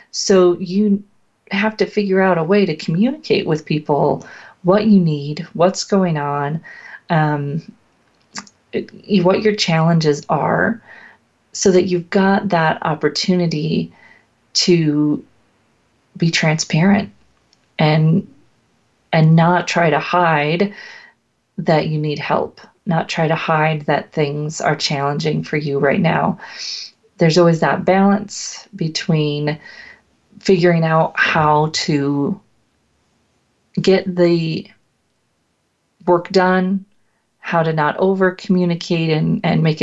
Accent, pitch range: American, 155-190 Hz